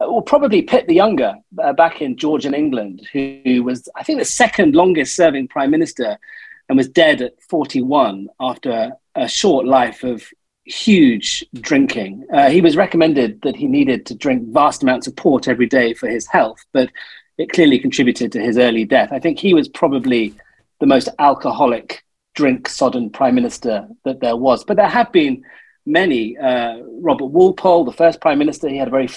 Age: 40-59